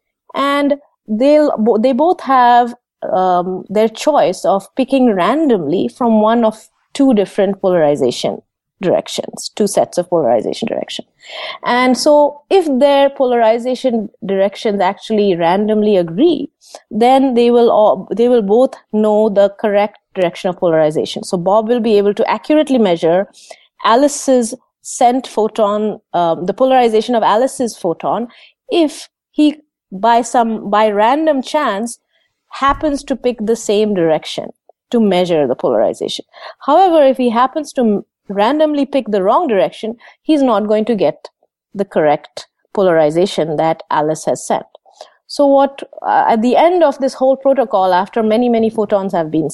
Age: 30-49